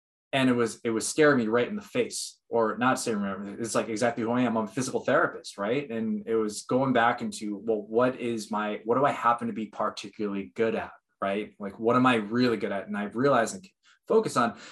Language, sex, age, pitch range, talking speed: English, male, 20-39, 105-140 Hz, 240 wpm